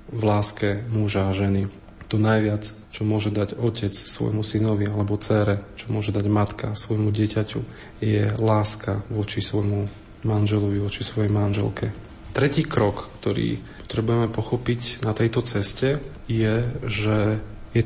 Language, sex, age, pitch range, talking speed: Slovak, male, 40-59, 105-120 Hz, 135 wpm